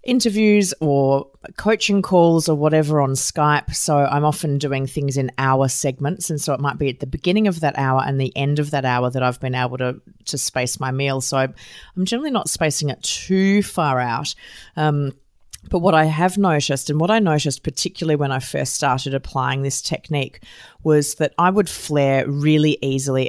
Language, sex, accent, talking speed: English, female, Australian, 195 wpm